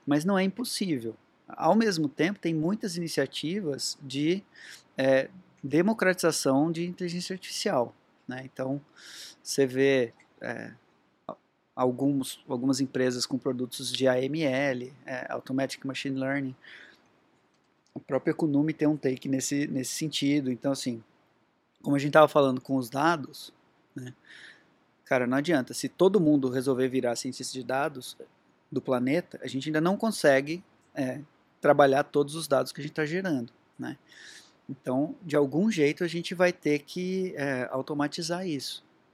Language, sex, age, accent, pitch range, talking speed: Portuguese, male, 20-39, Brazilian, 130-165 Hz, 145 wpm